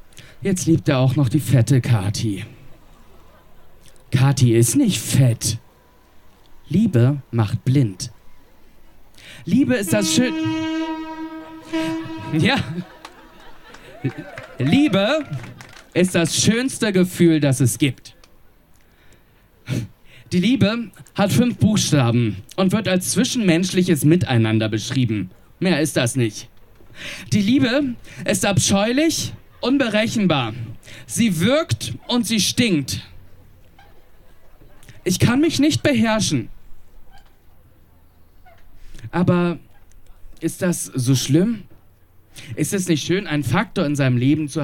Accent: German